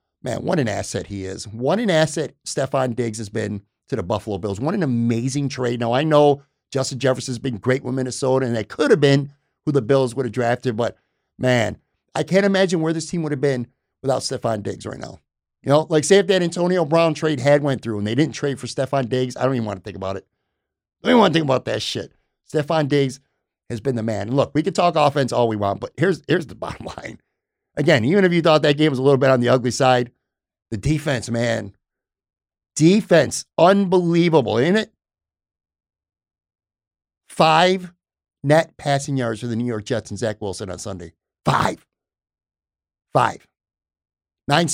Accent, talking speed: American, 205 wpm